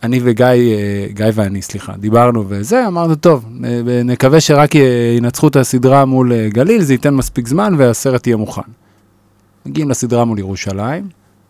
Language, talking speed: Hebrew, 140 wpm